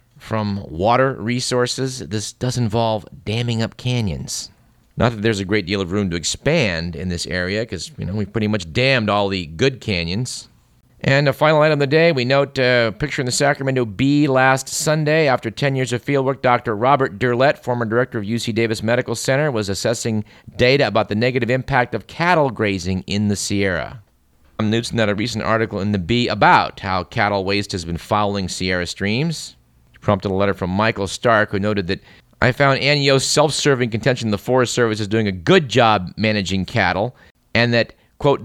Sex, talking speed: male, 195 wpm